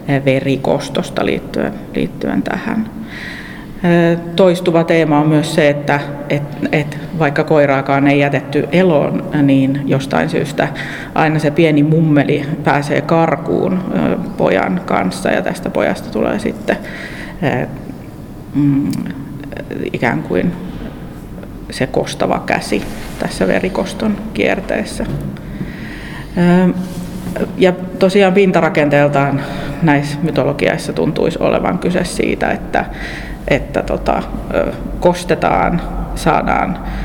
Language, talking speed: Finnish, 85 wpm